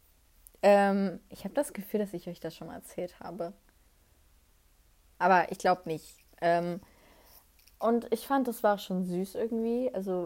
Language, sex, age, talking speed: German, female, 20-39, 145 wpm